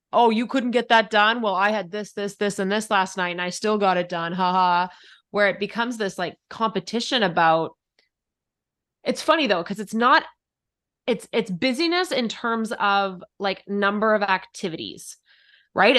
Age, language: 20-39, English